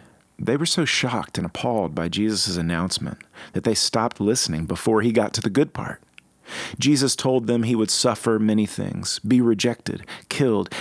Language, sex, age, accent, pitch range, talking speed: English, male, 40-59, American, 85-120 Hz, 170 wpm